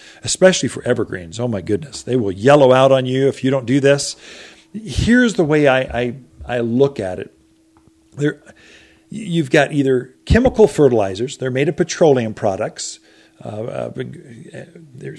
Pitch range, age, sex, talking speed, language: 120-150 Hz, 40-59, male, 160 wpm, English